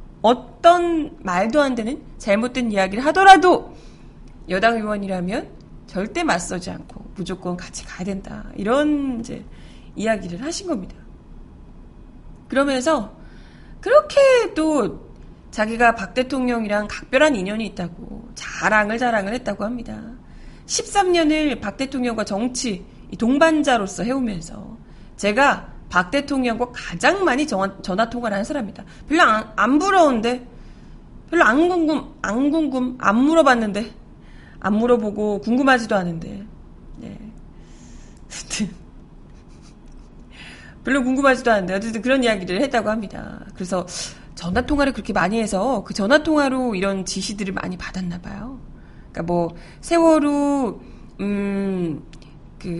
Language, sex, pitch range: Korean, female, 195-275 Hz